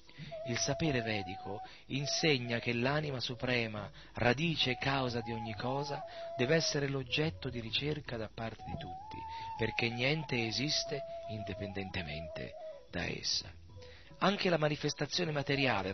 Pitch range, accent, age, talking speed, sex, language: 110-150 Hz, native, 40-59, 120 wpm, male, Italian